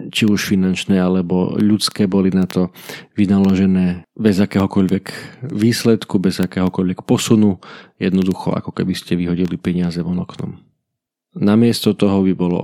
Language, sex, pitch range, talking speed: Slovak, male, 90-105 Hz, 130 wpm